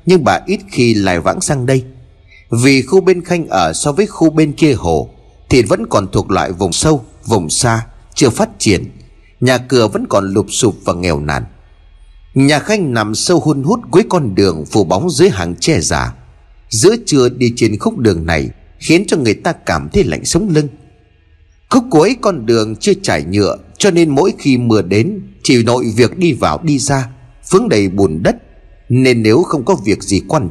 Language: Vietnamese